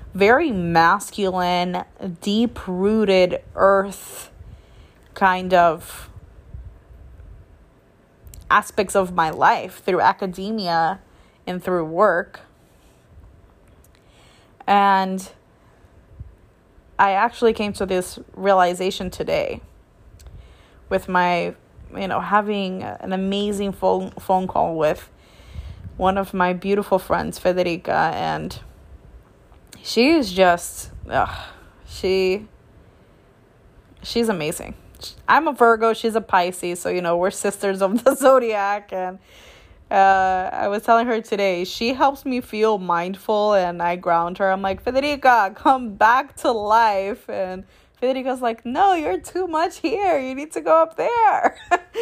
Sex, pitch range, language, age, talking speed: female, 180-230 Hz, English, 20-39, 115 wpm